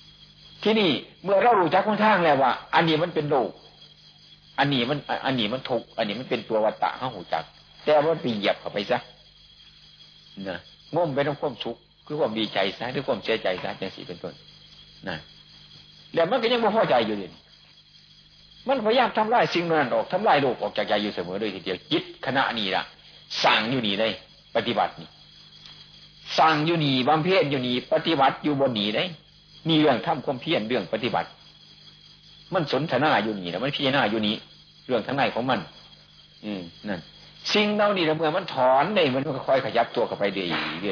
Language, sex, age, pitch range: Thai, male, 60-79, 120-170 Hz